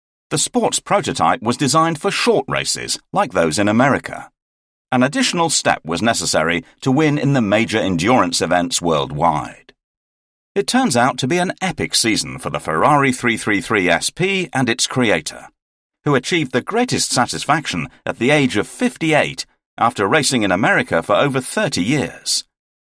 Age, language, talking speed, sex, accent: 50-69, Italian, 155 wpm, male, British